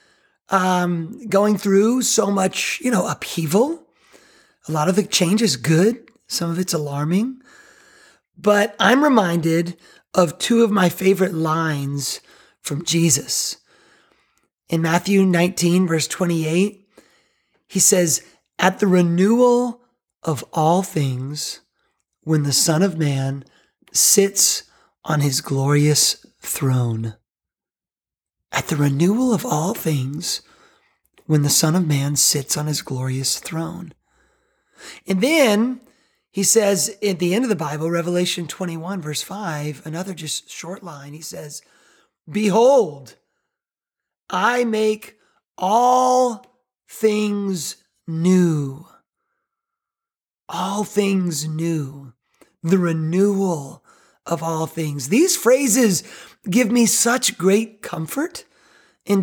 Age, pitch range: 30-49, 160-220 Hz